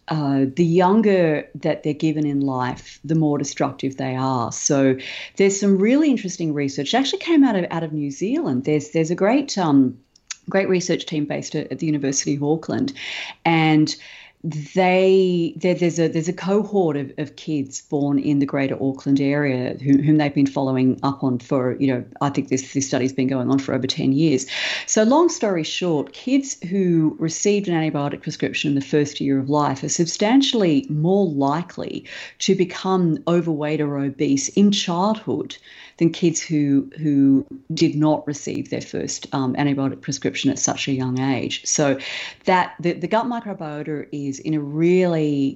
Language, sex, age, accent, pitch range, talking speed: English, female, 40-59, Australian, 140-180 Hz, 180 wpm